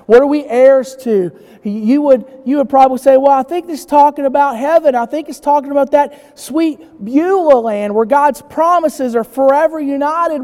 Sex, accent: male, American